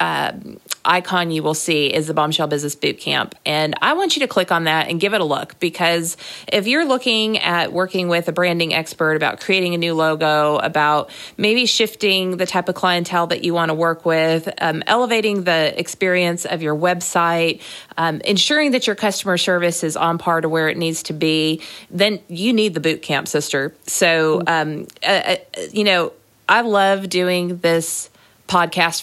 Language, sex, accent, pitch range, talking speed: English, female, American, 155-200 Hz, 185 wpm